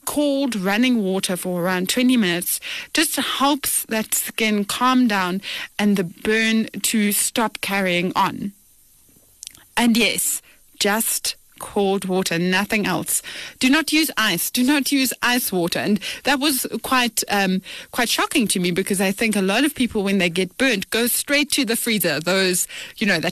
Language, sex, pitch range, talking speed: English, female, 195-250 Hz, 165 wpm